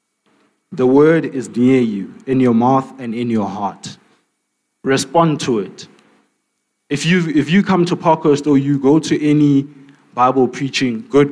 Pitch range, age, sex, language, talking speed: 125-160 Hz, 20-39, male, English, 160 wpm